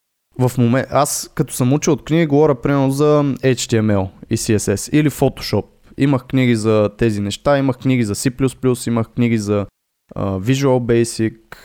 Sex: male